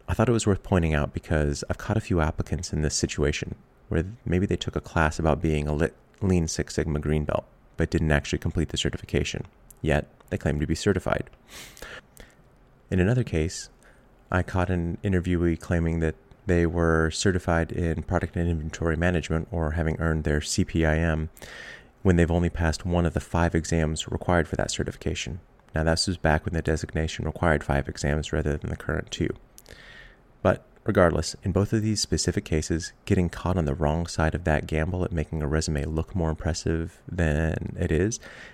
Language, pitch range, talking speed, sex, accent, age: English, 75-90 Hz, 185 wpm, male, American, 30-49